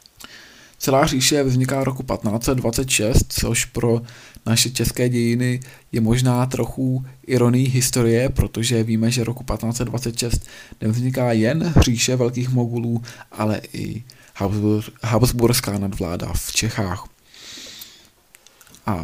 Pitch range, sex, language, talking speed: 110-125 Hz, male, Czech, 100 wpm